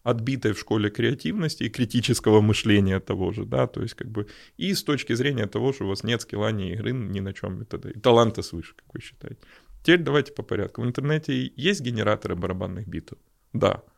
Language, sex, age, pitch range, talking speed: Russian, male, 20-39, 100-125 Hz, 200 wpm